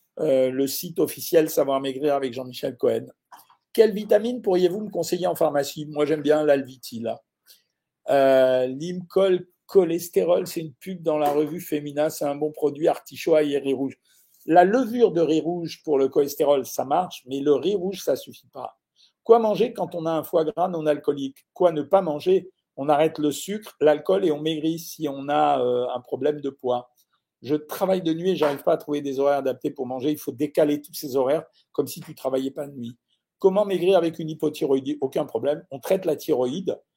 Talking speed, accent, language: 205 wpm, French, French